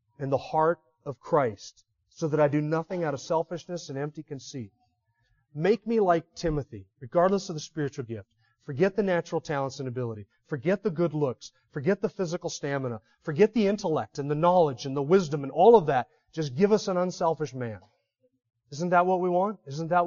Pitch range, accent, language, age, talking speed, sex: 120-165 Hz, American, English, 30-49, 195 wpm, male